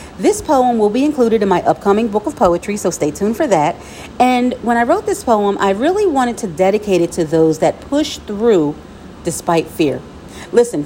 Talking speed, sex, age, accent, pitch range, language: 200 wpm, female, 40-59, American, 180-245 Hz, English